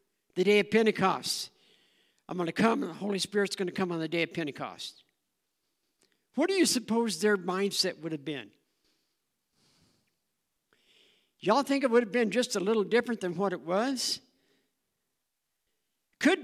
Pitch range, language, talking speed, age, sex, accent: 195-255 Hz, English, 160 wpm, 60-79, male, American